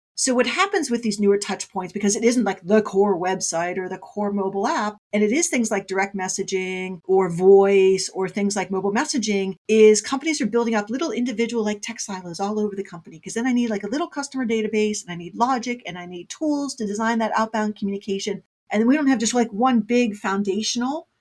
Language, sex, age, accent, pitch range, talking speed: English, female, 40-59, American, 185-225 Hz, 225 wpm